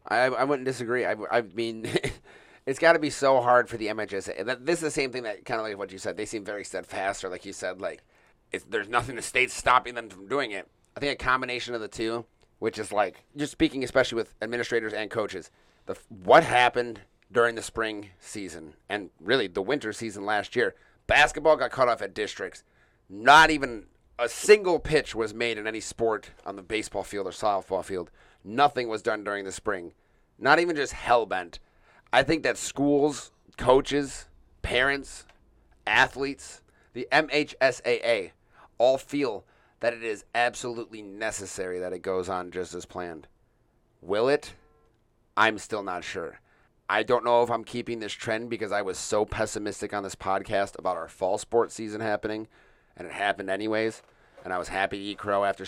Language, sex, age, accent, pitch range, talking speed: English, male, 30-49, American, 100-130 Hz, 185 wpm